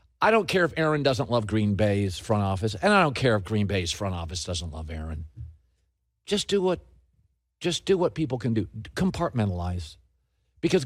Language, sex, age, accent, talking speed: English, male, 50-69, American, 190 wpm